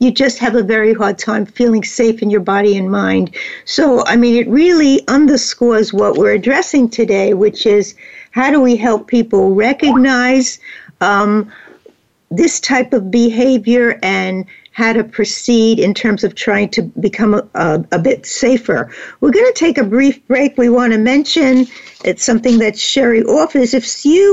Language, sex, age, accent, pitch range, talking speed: English, female, 60-79, American, 210-265 Hz, 170 wpm